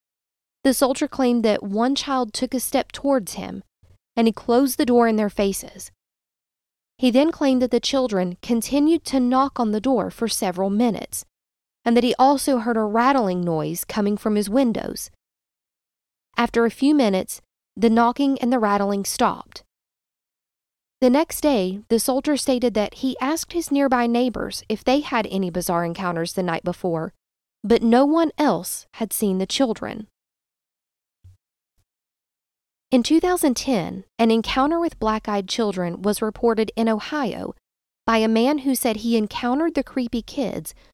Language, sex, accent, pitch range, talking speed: English, female, American, 210-265 Hz, 155 wpm